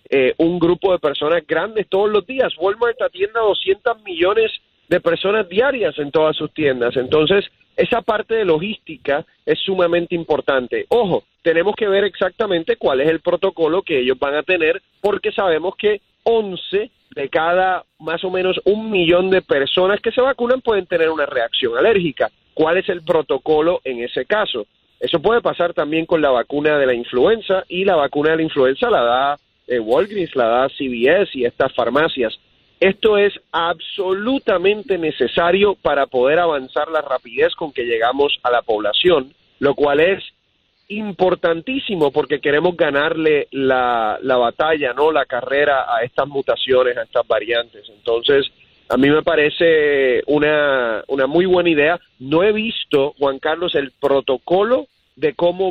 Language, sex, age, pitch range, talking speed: Spanish, male, 30-49, 150-215 Hz, 160 wpm